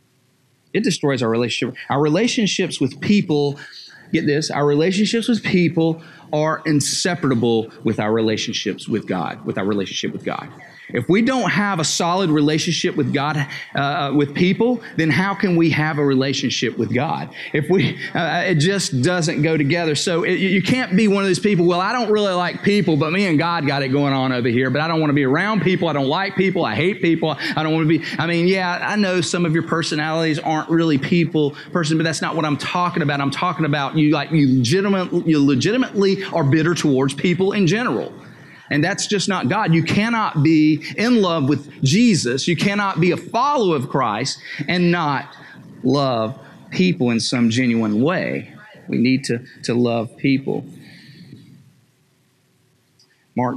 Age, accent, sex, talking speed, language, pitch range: 40-59, American, male, 190 wpm, English, 140-180 Hz